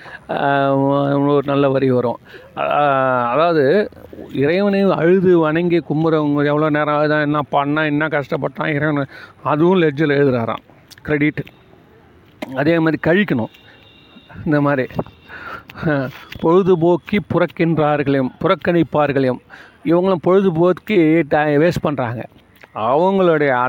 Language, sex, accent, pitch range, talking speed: Tamil, male, native, 140-170 Hz, 90 wpm